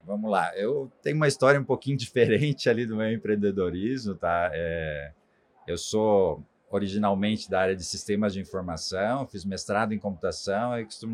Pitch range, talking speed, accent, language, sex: 100-125 Hz, 155 wpm, Brazilian, Portuguese, male